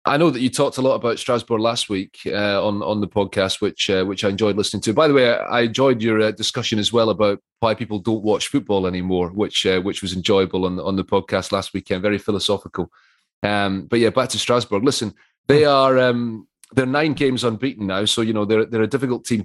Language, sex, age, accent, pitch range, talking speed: English, male, 30-49, British, 100-115 Hz, 235 wpm